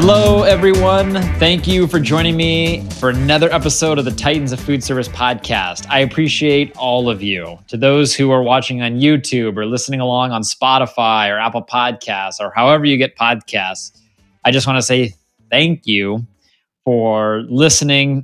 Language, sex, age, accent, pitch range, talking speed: English, male, 20-39, American, 110-130 Hz, 165 wpm